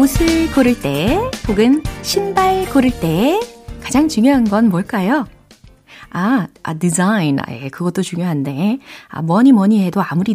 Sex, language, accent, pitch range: female, Korean, native, 155-255 Hz